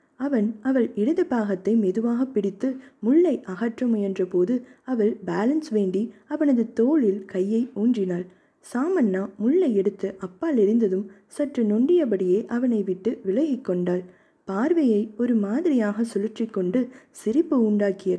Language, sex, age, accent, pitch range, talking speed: Tamil, female, 20-39, native, 200-260 Hz, 110 wpm